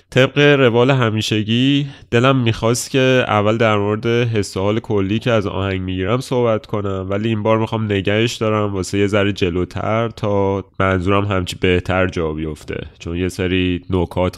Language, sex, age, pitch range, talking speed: Persian, male, 30-49, 90-115 Hz, 155 wpm